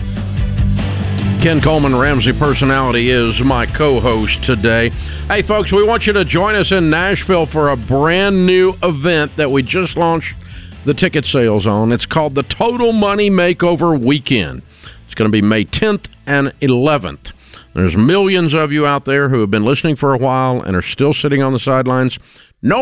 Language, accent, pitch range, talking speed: English, American, 115-150 Hz, 175 wpm